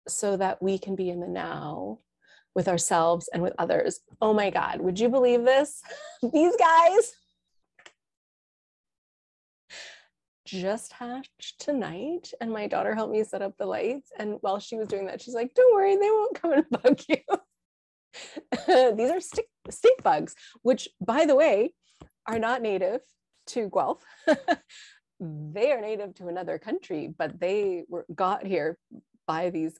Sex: female